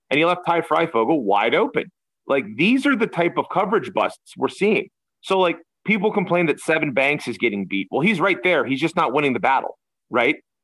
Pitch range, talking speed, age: 125-190 Hz, 215 wpm, 30-49